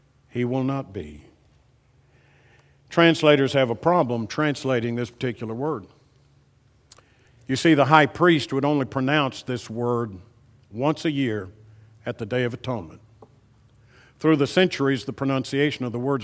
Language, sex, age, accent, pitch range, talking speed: English, male, 50-69, American, 120-170 Hz, 140 wpm